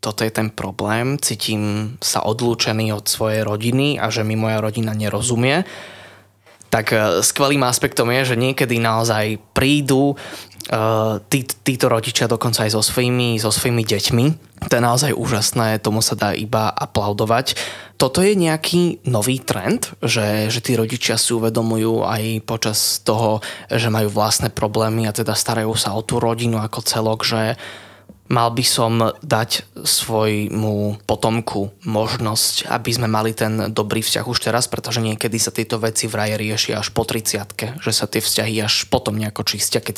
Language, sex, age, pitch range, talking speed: Slovak, male, 20-39, 110-120 Hz, 160 wpm